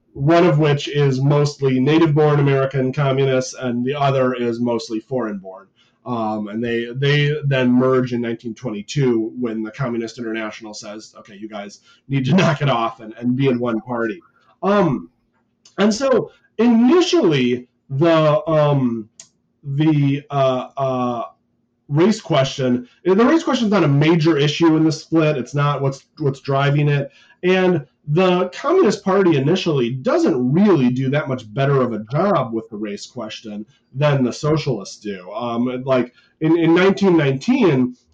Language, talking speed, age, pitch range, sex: English, 150 wpm, 30-49, 120-150 Hz, male